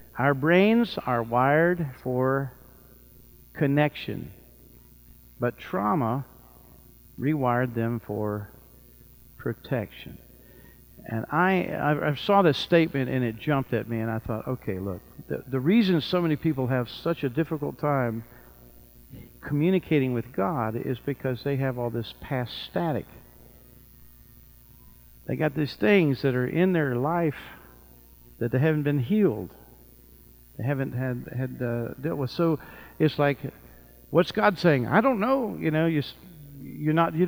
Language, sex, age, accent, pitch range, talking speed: English, male, 50-69, American, 120-160 Hz, 135 wpm